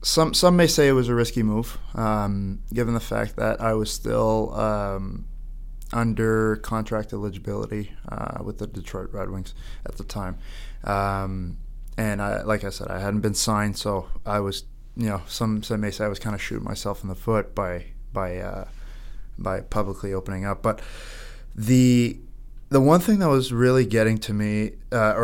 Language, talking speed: English, 185 wpm